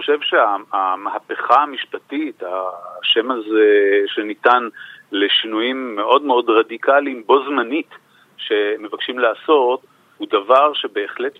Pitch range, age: 275-435 Hz, 40-59